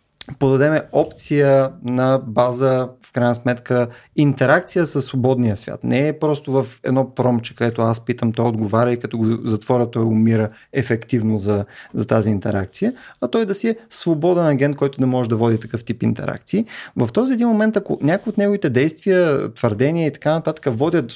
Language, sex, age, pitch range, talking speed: Bulgarian, male, 30-49, 115-165 Hz, 175 wpm